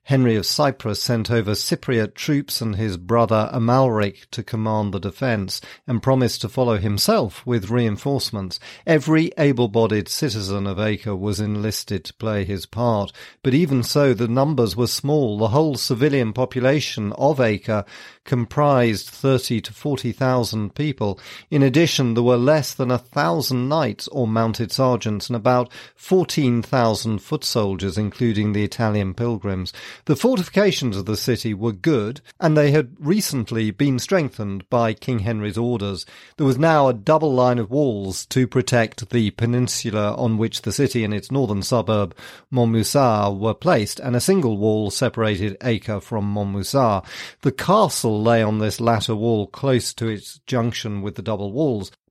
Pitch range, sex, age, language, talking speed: 105-130 Hz, male, 40-59, English, 155 wpm